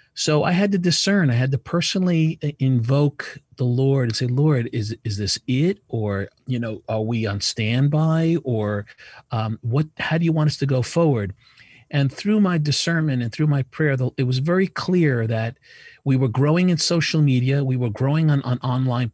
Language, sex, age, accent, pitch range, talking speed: English, male, 40-59, American, 120-155 Hz, 195 wpm